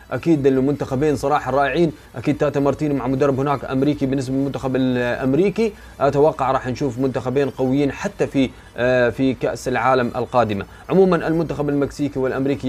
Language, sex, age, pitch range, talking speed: Arabic, male, 20-39, 125-160 Hz, 135 wpm